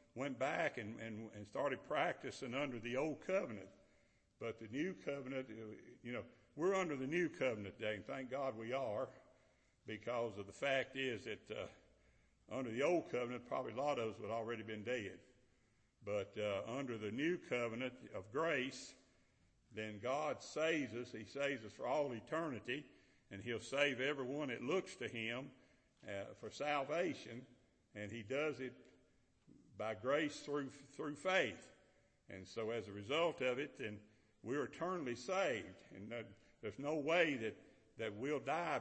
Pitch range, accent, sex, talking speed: 110-135 Hz, American, male, 165 wpm